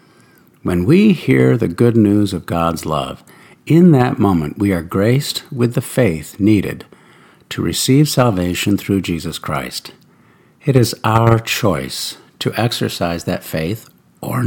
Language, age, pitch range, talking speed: English, 60-79, 90-125 Hz, 140 wpm